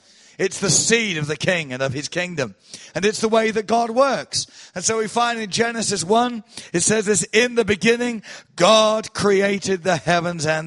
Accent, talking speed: British, 195 wpm